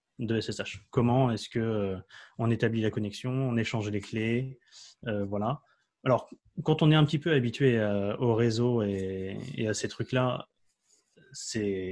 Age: 20-39